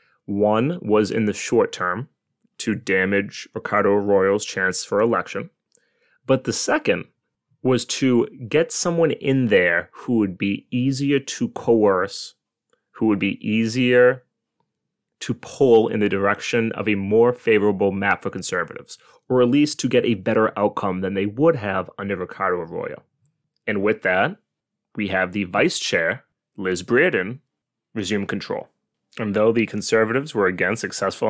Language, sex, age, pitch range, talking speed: English, male, 30-49, 100-125 Hz, 150 wpm